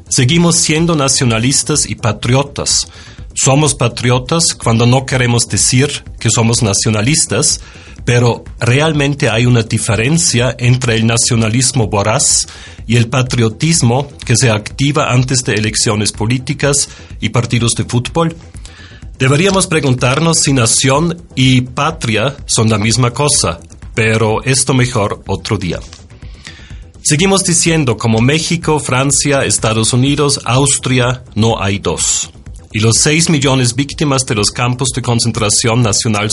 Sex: male